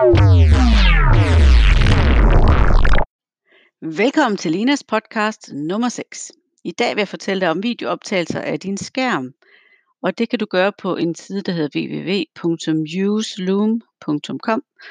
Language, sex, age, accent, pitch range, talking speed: Danish, female, 60-79, native, 165-220 Hz, 115 wpm